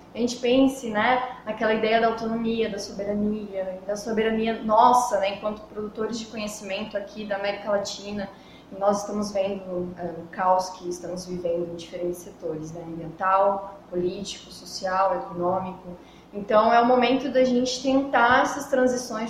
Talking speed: 150 wpm